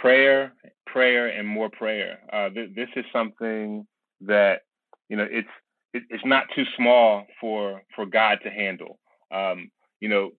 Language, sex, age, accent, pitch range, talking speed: English, male, 30-49, American, 105-130 Hz, 150 wpm